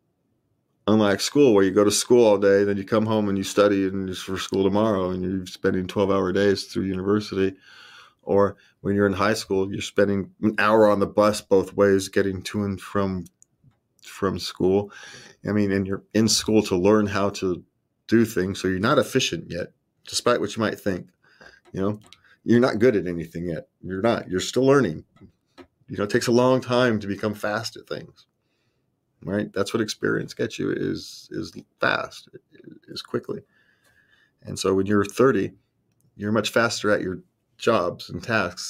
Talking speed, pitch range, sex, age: 185 wpm, 95-115 Hz, male, 30-49